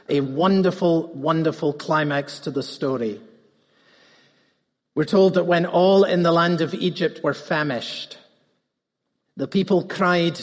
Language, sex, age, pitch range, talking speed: English, male, 50-69, 175-240 Hz, 125 wpm